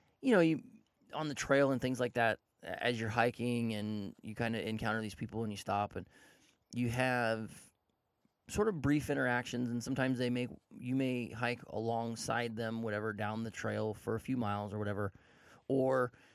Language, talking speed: English, 185 wpm